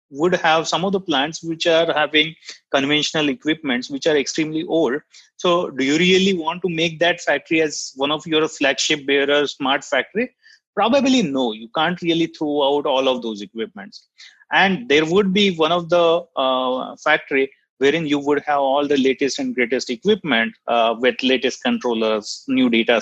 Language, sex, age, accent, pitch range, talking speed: English, male, 30-49, Indian, 135-185 Hz, 175 wpm